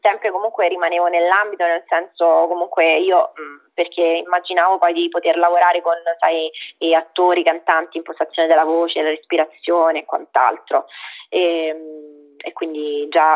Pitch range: 160-200 Hz